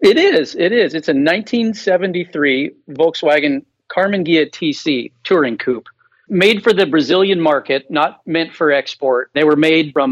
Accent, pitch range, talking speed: American, 130-165 Hz, 155 wpm